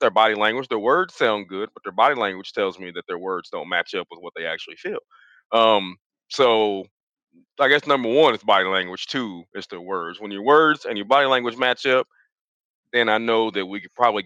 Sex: male